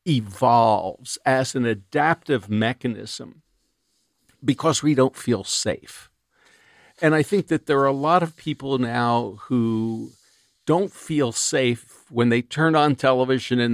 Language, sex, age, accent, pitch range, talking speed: English, male, 50-69, American, 115-150 Hz, 140 wpm